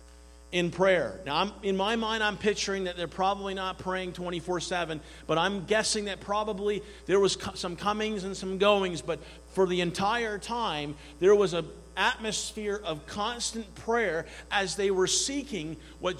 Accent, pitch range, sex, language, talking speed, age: American, 135-205 Hz, male, English, 170 wpm, 50-69